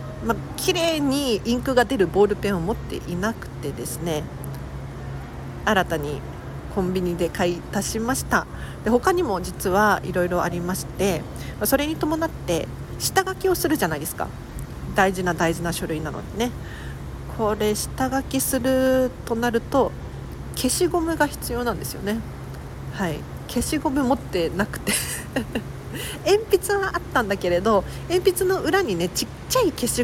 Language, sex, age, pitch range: Japanese, female, 40-59, 185-295 Hz